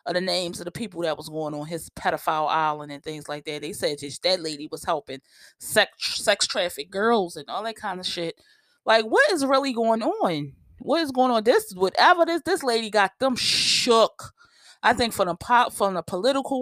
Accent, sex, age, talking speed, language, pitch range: American, female, 20-39, 215 wpm, English, 160-240 Hz